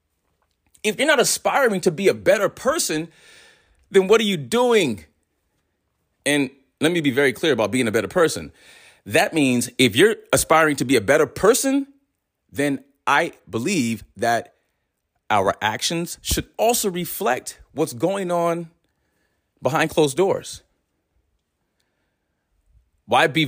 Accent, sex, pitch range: American, male, 110-175 Hz